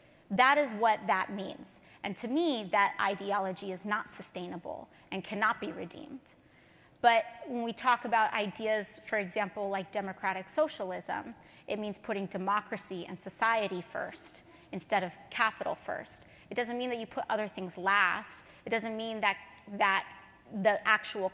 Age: 30-49